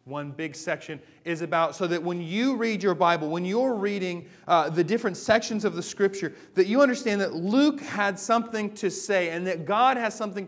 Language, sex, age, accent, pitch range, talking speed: English, male, 30-49, American, 150-195 Hz, 205 wpm